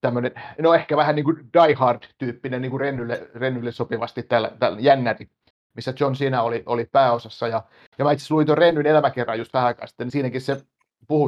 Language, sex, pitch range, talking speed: Finnish, male, 120-145 Hz, 180 wpm